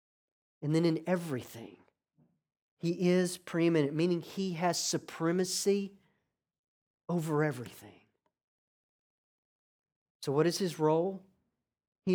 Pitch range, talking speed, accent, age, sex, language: 145-185 Hz, 95 wpm, American, 40-59, male, English